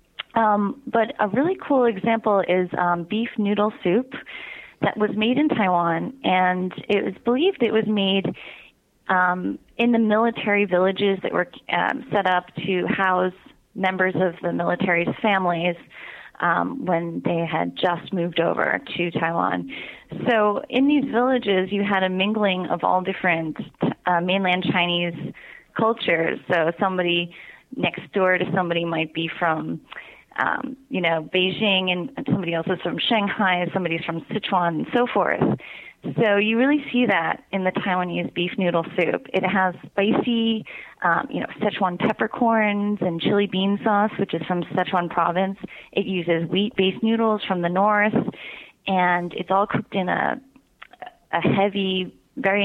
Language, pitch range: English, 180-215 Hz